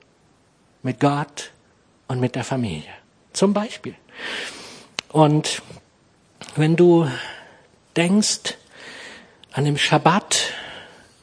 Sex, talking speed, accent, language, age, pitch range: male, 80 wpm, German, German, 60-79, 145-190 Hz